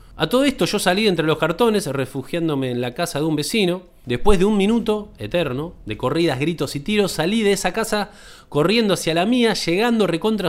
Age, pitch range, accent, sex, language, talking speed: 20-39, 135-195 Hz, Argentinian, male, Spanish, 200 wpm